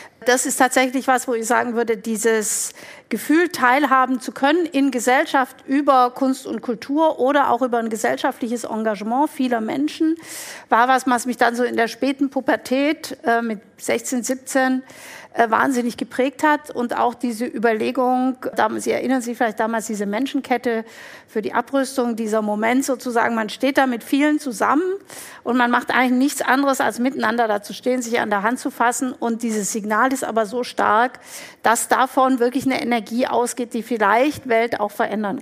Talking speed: 175 wpm